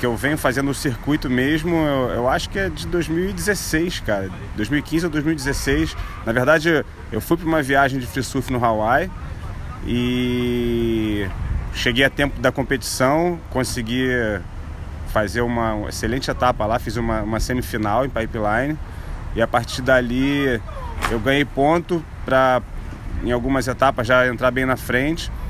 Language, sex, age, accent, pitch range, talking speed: Portuguese, male, 30-49, Brazilian, 105-140 Hz, 155 wpm